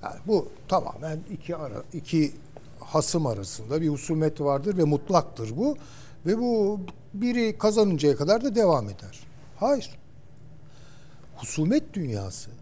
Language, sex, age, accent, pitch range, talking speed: Turkish, male, 60-79, native, 125-160 Hz, 120 wpm